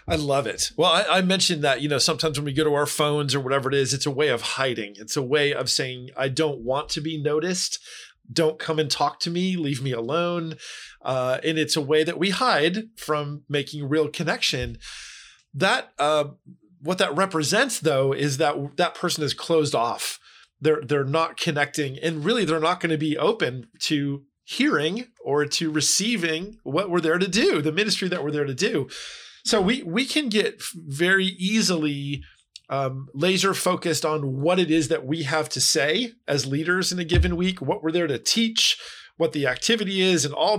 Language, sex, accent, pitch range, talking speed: English, male, American, 145-190 Hz, 200 wpm